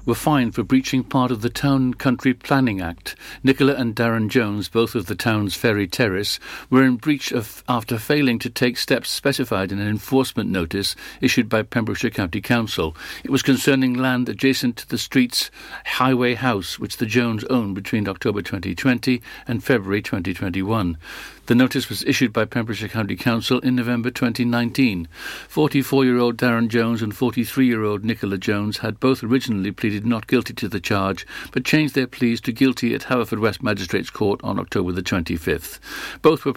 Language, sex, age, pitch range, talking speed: English, male, 60-79, 105-130 Hz, 170 wpm